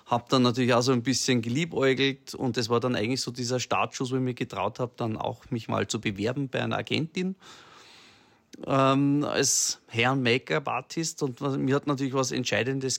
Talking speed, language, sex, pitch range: 185 wpm, German, male, 120-140 Hz